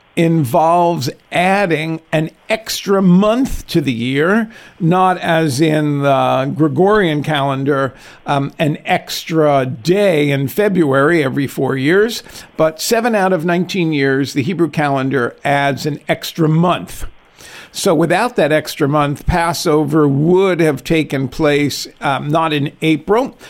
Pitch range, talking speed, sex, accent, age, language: 140-175 Hz, 130 wpm, male, American, 50-69, English